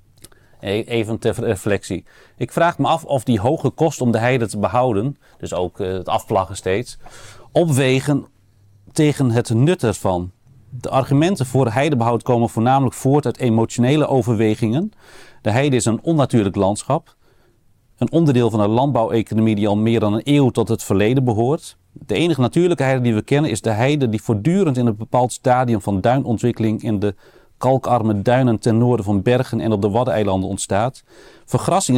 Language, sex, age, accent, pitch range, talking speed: Dutch, male, 40-59, Dutch, 110-130 Hz, 170 wpm